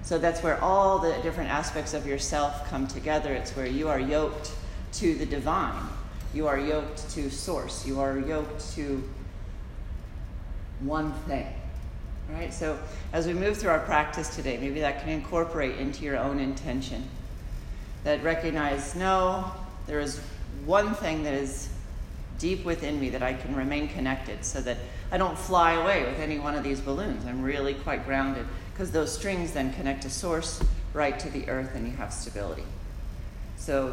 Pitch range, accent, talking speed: 130-155 Hz, American, 170 wpm